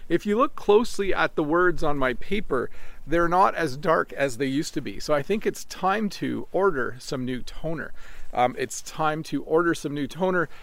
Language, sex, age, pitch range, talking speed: English, male, 40-59, 150-195 Hz, 210 wpm